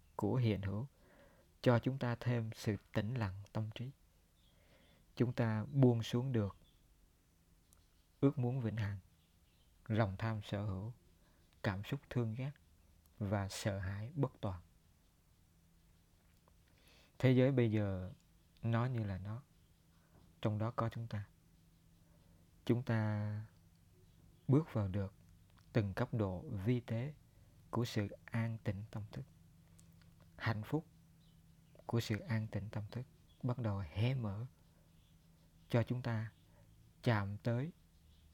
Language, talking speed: Vietnamese, 125 wpm